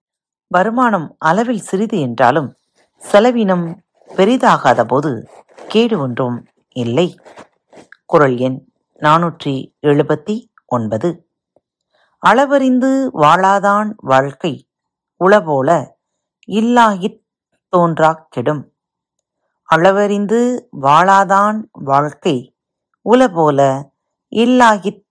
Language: Tamil